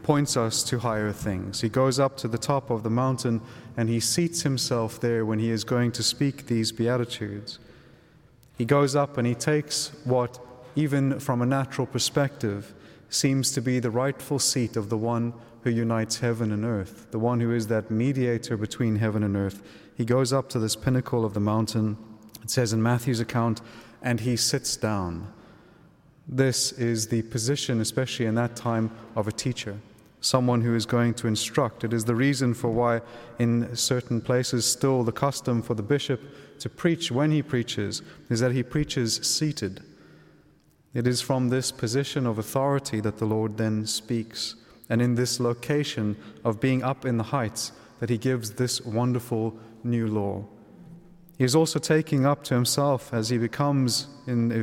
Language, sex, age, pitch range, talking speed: English, male, 30-49, 115-135 Hz, 180 wpm